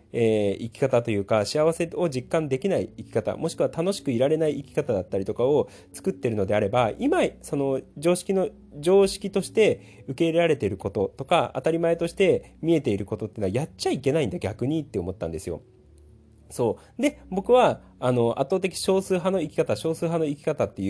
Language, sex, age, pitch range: Japanese, male, 30-49, 115-180 Hz